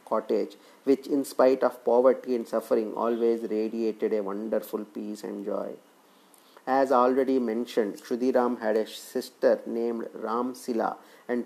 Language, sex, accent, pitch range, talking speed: English, male, Indian, 110-130 Hz, 130 wpm